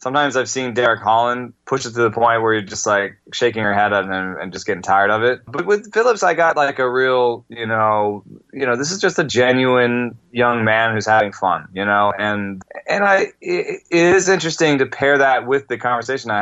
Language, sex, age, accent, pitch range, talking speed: English, male, 20-39, American, 110-130 Hz, 225 wpm